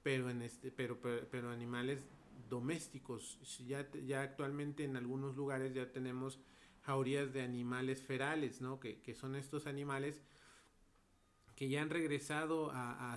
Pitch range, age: 120-140 Hz, 40-59